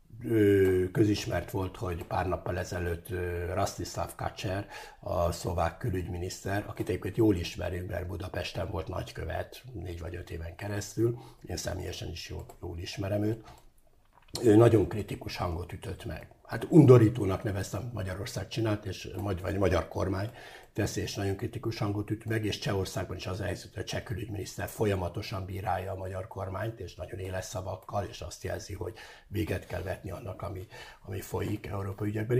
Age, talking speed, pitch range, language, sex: 60-79, 155 wpm, 90-115 Hz, English, male